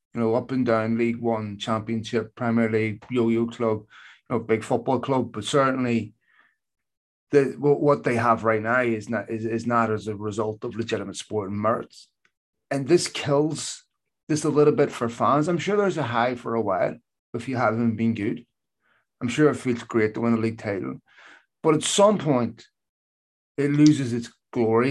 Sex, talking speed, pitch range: male, 190 wpm, 115-145 Hz